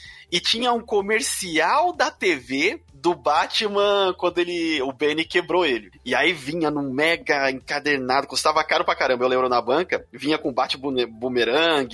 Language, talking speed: Portuguese, 165 wpm